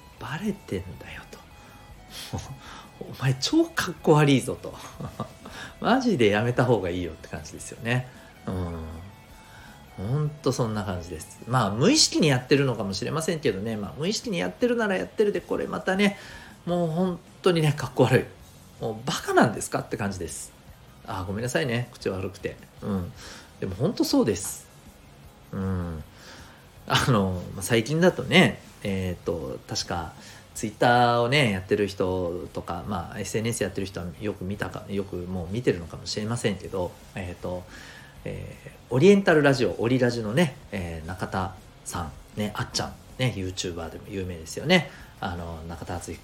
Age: 40-59